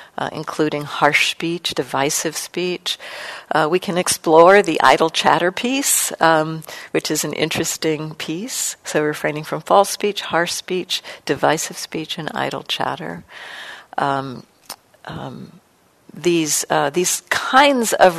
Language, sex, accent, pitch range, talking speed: English, female, American, 150-185 Hz, 130 wpm